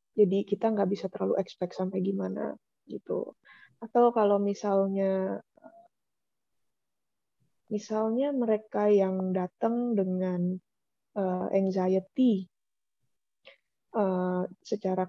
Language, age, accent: Indonesian, 20-39, native